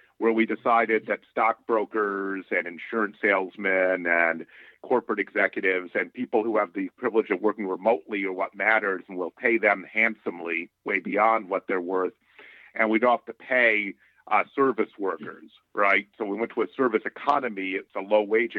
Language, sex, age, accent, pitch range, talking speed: English, male, 50-69, American, 100-125 Hz, 170 wpm